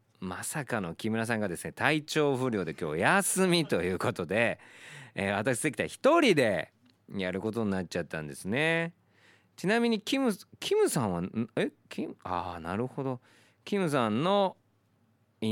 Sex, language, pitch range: male, Japanese, 100-135 Hz